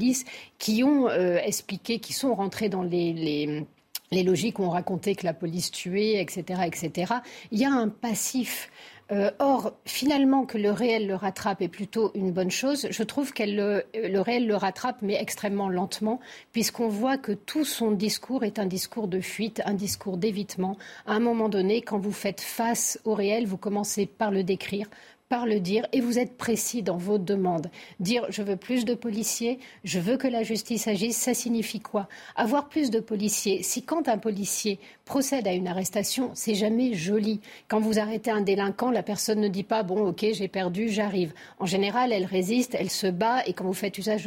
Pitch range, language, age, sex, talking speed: 195-235 Hz, French, 50-69, female, 205 wpm